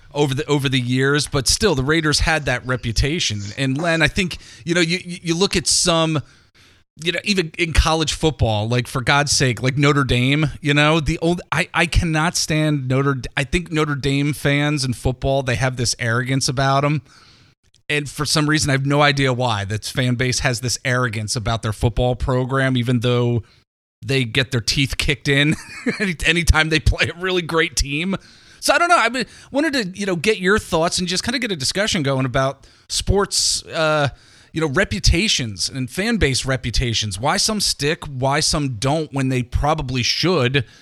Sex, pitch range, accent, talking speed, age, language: male, 125-165 Hz, American, 195 wpm, 30-49, English